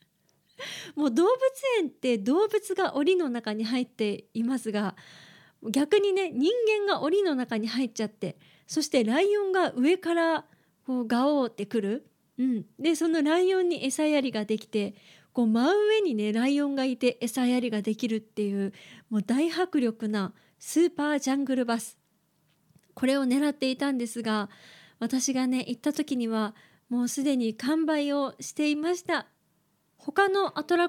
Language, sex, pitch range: Japanese, female, 225-315 Hz